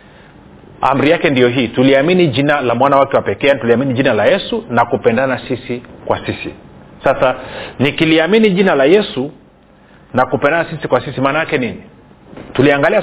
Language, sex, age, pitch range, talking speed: Swahili, male, 40-59, 130-180 Hz, 145 wpm